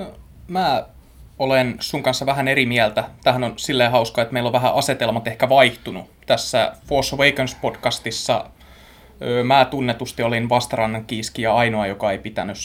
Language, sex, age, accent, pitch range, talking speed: Finnish, male, 20-39, native, 110-135 Hz, 140 wpm